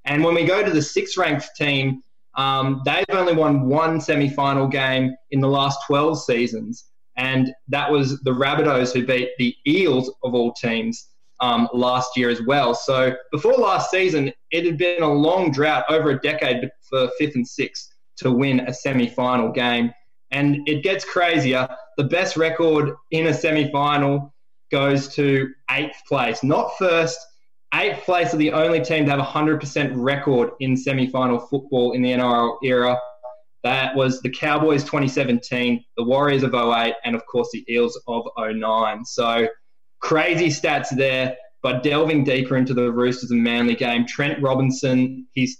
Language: English